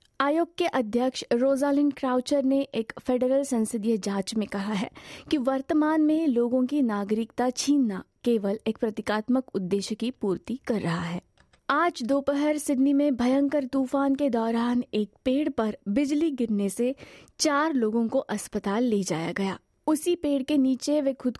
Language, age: Hindi, 20-39